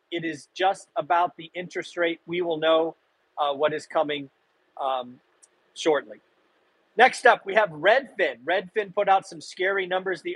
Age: 40-59